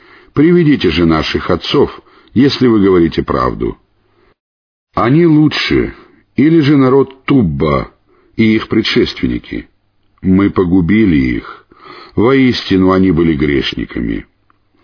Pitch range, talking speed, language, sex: 85-125 Hz, 95 wpm, Russian, male